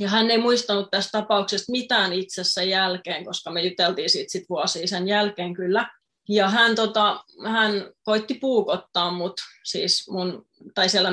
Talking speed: 150 wpm